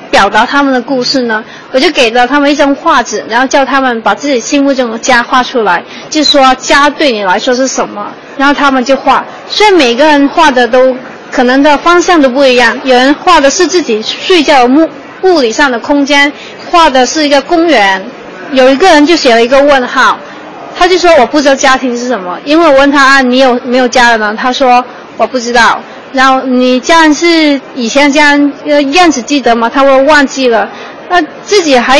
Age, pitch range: 20-39, 250-305 Hz